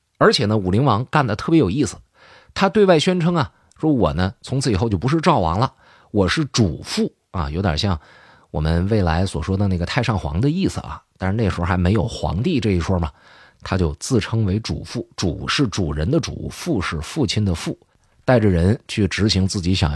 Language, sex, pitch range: Chinese, male, 90-130 Hz